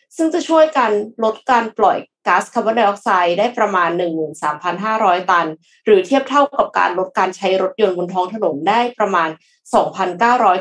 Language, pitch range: Thai, 185-240 Hz